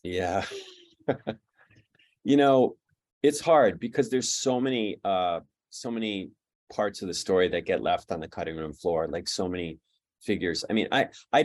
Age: 30-49